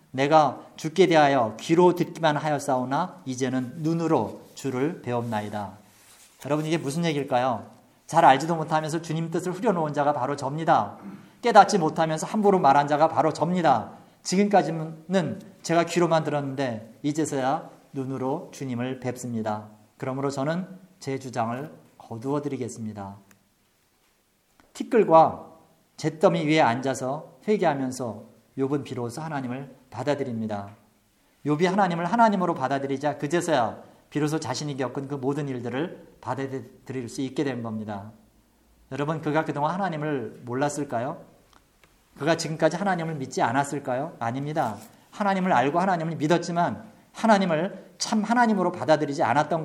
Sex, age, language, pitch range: male, 40-59, Korean, 130-165 Hz